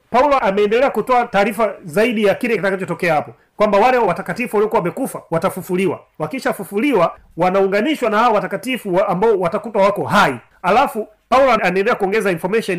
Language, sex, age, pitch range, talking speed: Swahili, male, 30-49, 185-235 Hz, 140 wpm